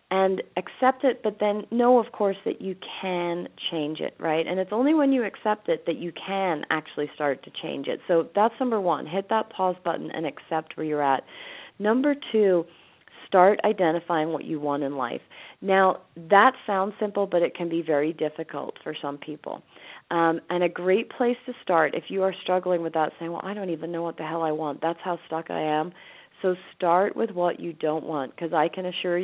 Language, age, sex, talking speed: English, 40-59, female, 215 wpm